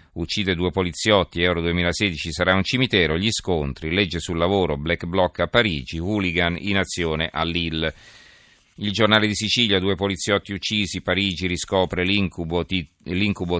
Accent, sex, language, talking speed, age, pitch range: native, male, Italian, 145 wpm, 40-59, 80-95 Hz